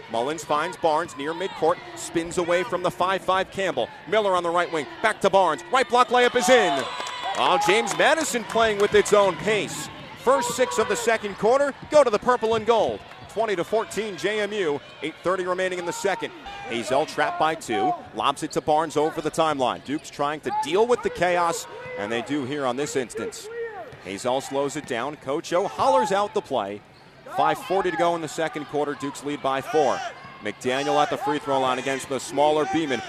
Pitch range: 155-250 Hz